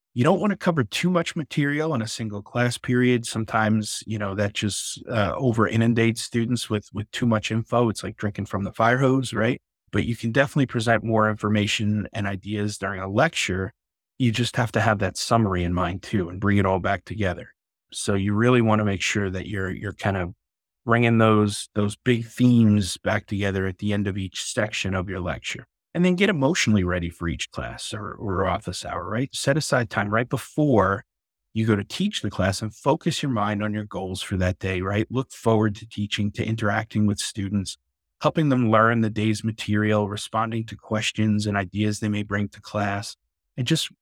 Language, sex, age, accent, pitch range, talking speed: English, male, 30-49, American, 100-120 Hz, 205 wpm